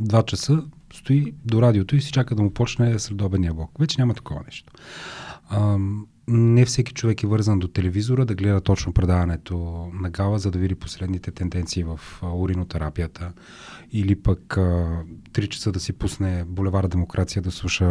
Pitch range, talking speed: 95-120 Hz, 165 wpm